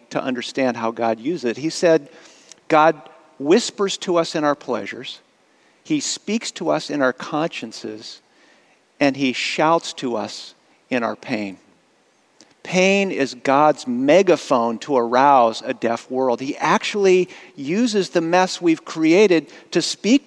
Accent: American